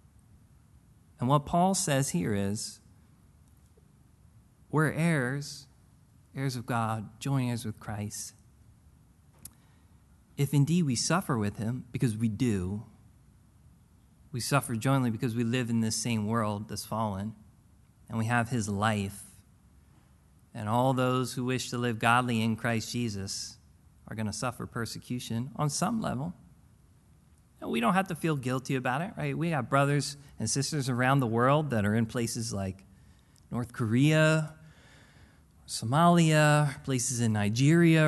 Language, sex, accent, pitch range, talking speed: English, male, American, 115-150 Hz, 140 wpm